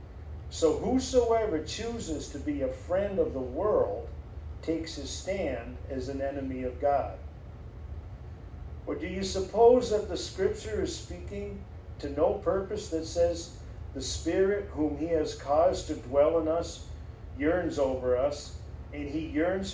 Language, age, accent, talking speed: English, 50-69, American, 145 wpm